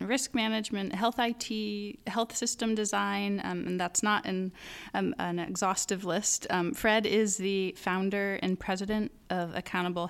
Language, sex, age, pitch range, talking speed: English, female, 20-39, 180-220 Hz, 150 wpm